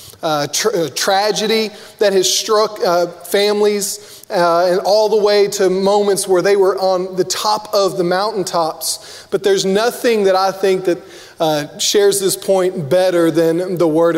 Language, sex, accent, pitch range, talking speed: English, male, American, 165-195 Hz, 175 wpm